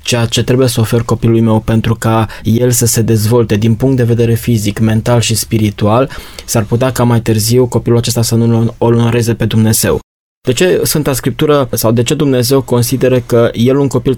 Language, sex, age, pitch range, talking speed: Romanian, male, 20-39, 115-130 Hz, 200 wpm